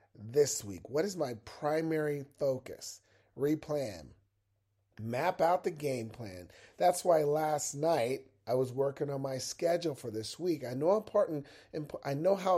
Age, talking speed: 40-59, 155 wpm